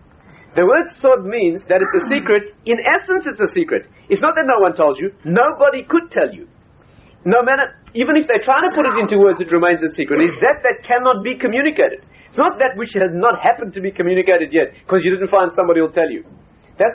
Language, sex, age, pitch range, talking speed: English, male, 40-59, 185-290 Hz, 230 wpm